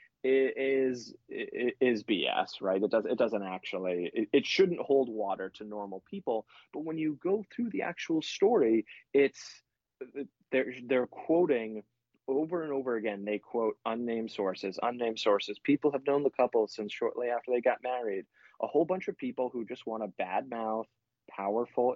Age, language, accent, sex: 20-39, English, American, male